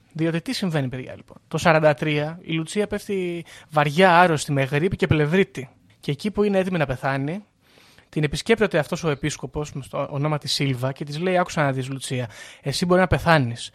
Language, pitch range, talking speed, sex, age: Greek, 135-190 Hz, 190 wpm, male, 20-39